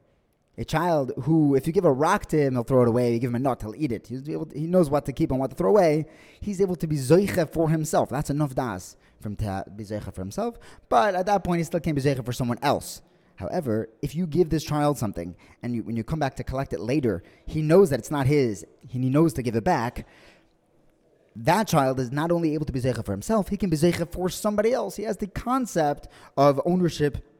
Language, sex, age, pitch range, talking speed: English, male, 20-39, 120-170 Hz, 255 wpm